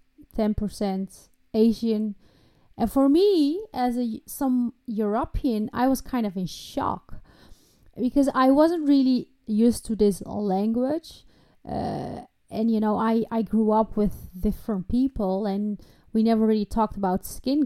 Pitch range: 210-245 Hz